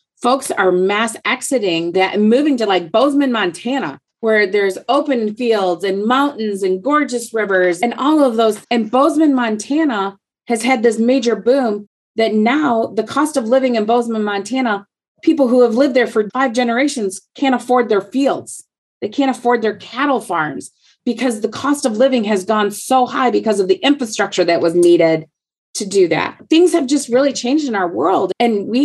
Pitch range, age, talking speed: 190-255 Hz, 30-49, 180 wpm